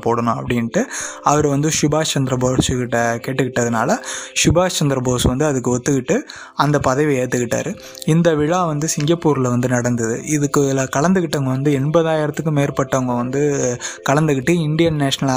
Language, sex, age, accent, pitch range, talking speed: Tamil, male, 20-39, native, 125-150 Hz, 120 wpm